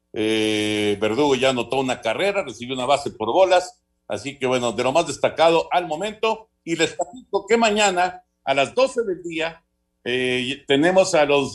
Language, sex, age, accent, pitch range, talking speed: Spanish, male, 50-69, Mexican, 130-190 Hz, 175 wpm